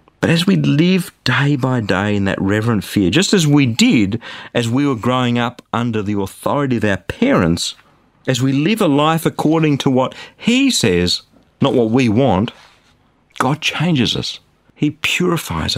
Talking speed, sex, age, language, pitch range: 170 wpm, male, 50-69, English, 105-155 Hz